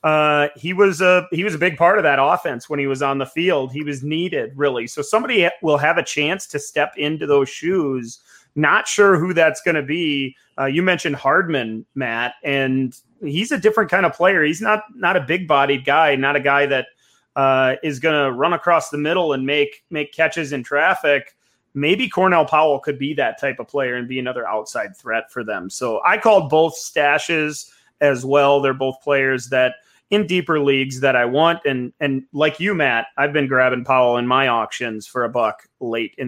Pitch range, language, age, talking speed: 135-170 Hz, English, 30-49, 210 wpm